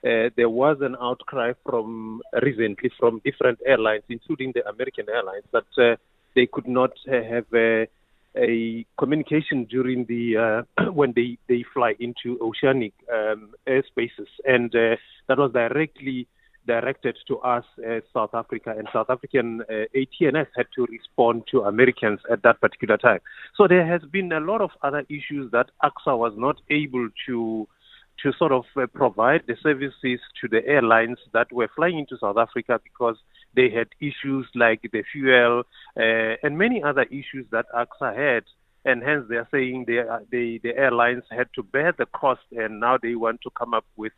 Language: English